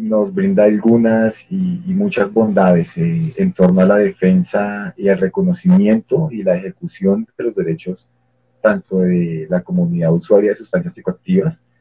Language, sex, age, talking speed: Spanish, male, 30-49, 150 wpm